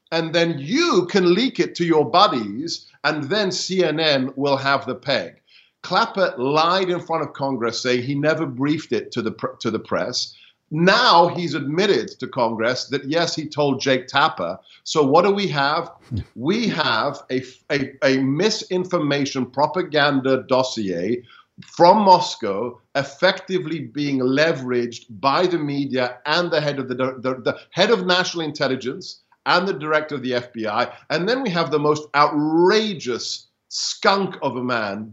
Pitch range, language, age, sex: 130-175 Hz, English, 50-69, male